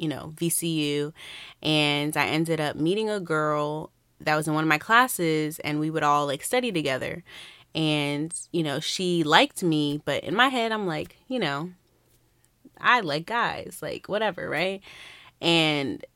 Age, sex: 20-39, female